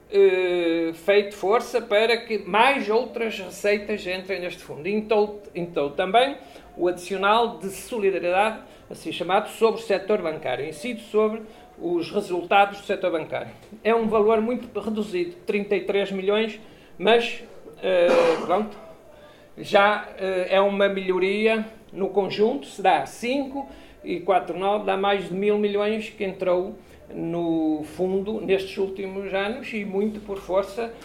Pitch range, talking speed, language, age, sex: 185-225 Hz, 130 wpm, Portuguese, 50-69, male